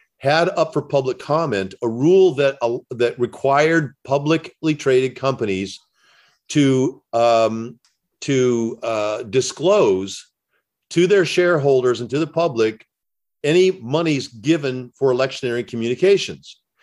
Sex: male